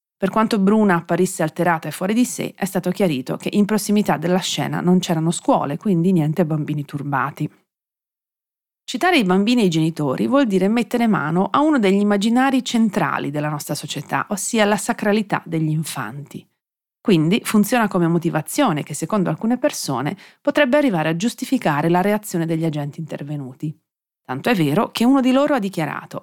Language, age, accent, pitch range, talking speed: Italian, 30-49, native, 160-215 Hz, 165 wpm